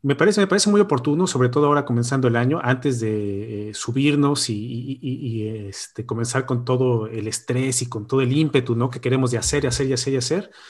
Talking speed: 235 wpm